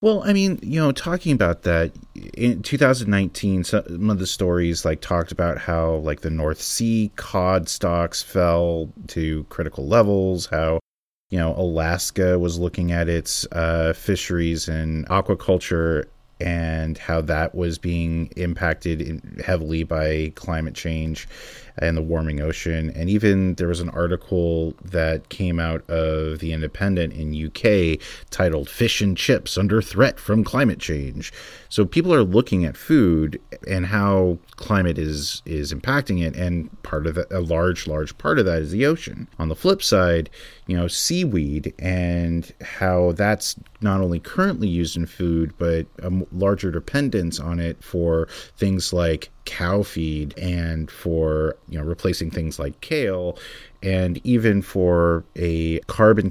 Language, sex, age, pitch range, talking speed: English, male, 30-49, 80-95 Hz, 150 wpm